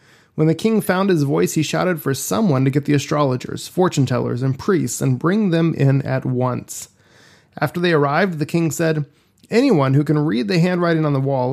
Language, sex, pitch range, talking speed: English, male, 130-165 Hz, 205 wpm